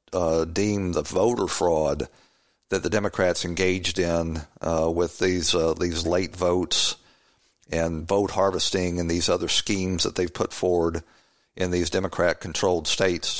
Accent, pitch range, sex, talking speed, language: American, 80-95 Hz, male, 150 wpm, English